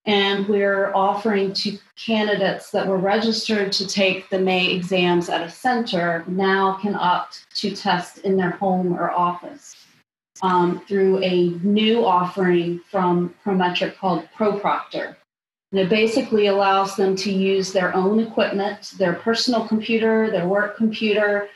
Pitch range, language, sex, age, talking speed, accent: 185-210 Hz, English, female, 30-49, 140 wpm, American